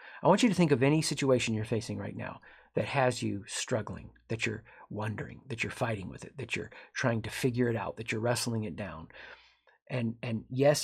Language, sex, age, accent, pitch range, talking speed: English, male, 40-59, American, 115-160 Hz, 215 wpm